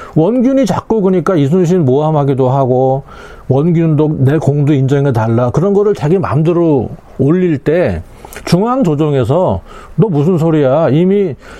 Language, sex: Korean, male